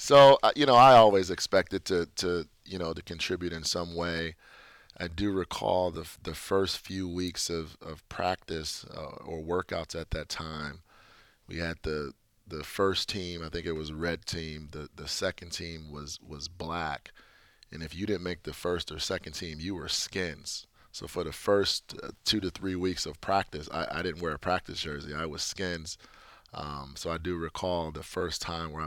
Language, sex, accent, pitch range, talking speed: English, male, American, 75-90 Hz, 195 wpm